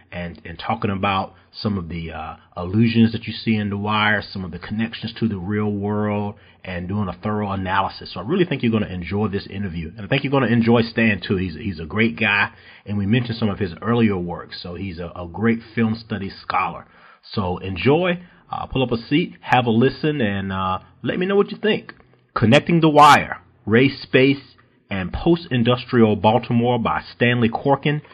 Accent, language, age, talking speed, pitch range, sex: American, English, 40-59, 205 wpm, 100-125 Hz, male